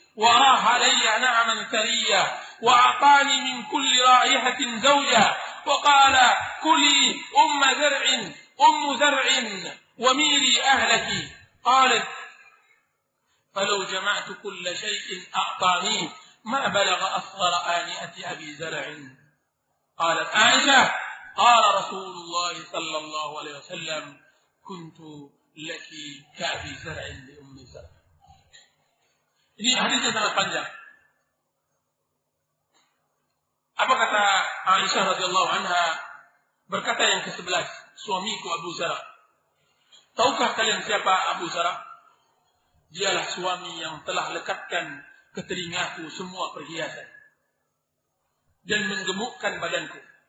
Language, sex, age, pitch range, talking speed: Indonesian, male, 50-69, 175-275 Hz, 90 wpm